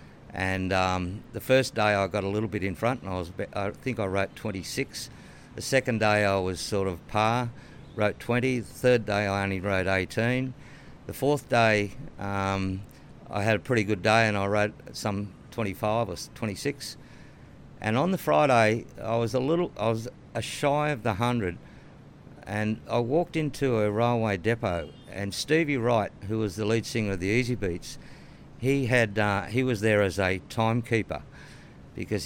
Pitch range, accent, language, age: 100-120 Hz, Australian, English, 60-79